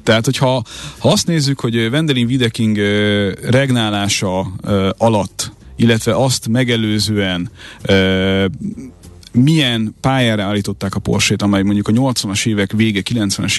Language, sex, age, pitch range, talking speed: Hungarian, male, 30-49, 100-115 Hz, 105 wpm